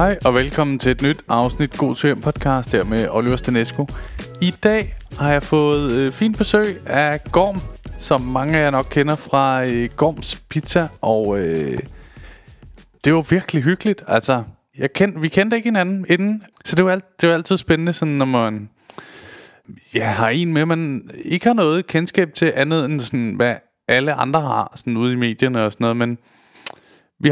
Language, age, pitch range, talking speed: Danish, 20-39, 120-165 Hz, 185 wpm